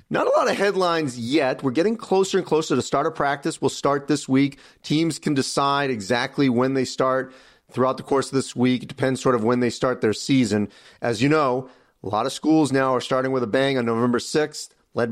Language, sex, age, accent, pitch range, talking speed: English, male, 40-59, American, 125-150 Hz, 230 wpm